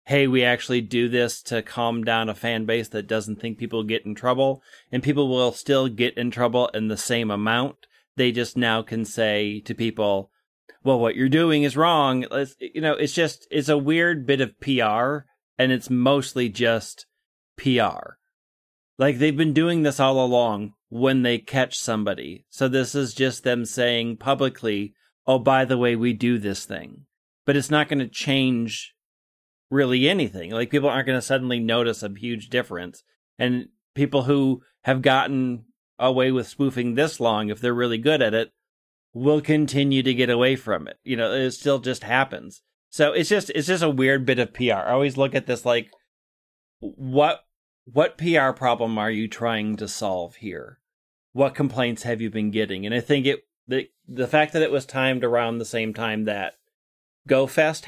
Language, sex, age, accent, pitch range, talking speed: English, male, 30-49, American, 115-140 Hz, 185 wpm